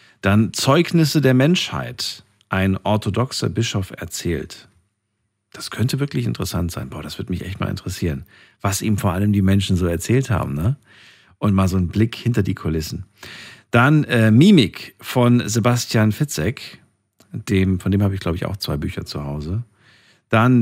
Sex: male